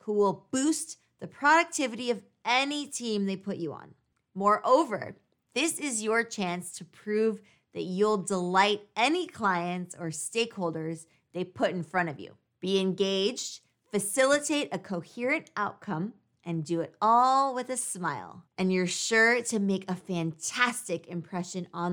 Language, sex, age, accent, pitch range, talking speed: English, female, 20-39, American, 175-225 Hz, 150 wpm